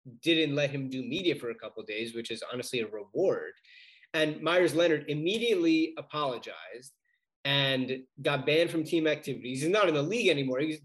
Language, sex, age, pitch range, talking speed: English, male, 30-49, 130-180 Hz, 175 wpm